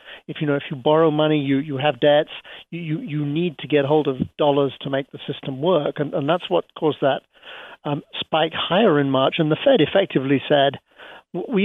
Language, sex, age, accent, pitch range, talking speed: English, male, 50-69, British, 140-165 Hz, 215 wpm